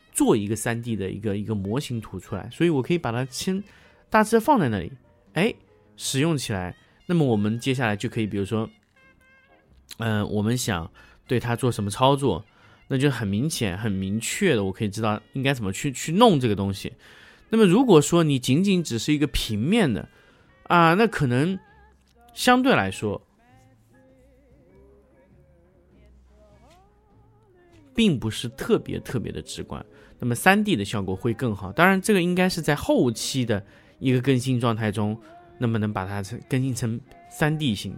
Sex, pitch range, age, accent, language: male, 105-145 Hz, 30-49, native, Chinese